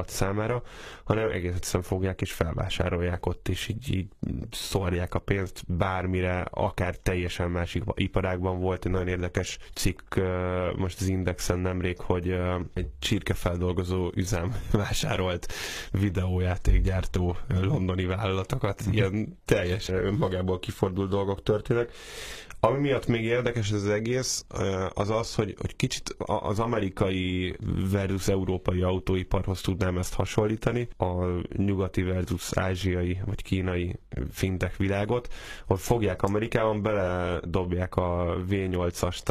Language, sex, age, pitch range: Hungarian, male, 10-29, 90-105 Hz